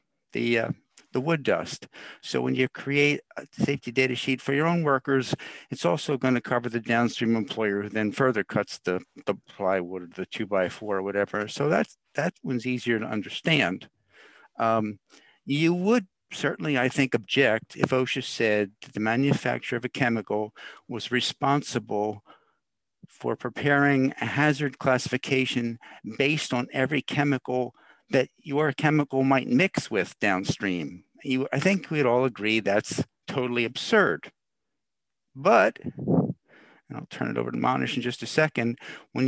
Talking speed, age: 145 wpm, 60-79